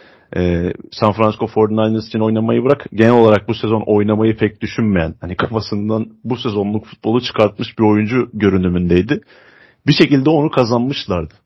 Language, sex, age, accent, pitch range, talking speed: Turkish, male, 40-59, native, 100-125 Hz, 135 wpm